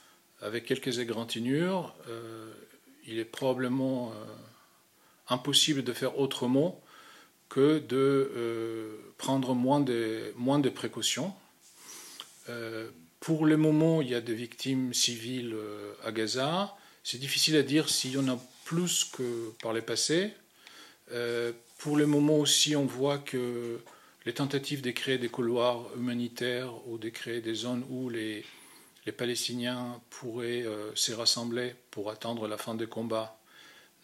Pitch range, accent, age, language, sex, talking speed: 115-135 Hz, French, 40-59, French, male, 140 wpm